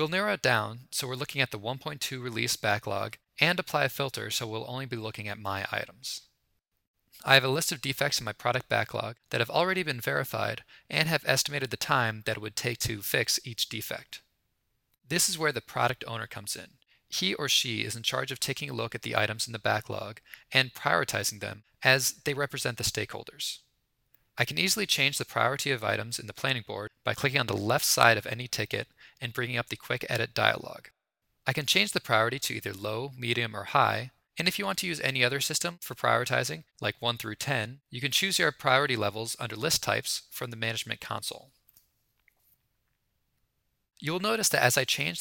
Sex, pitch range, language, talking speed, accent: male, 110-140 Hz, English, 210 wpm, American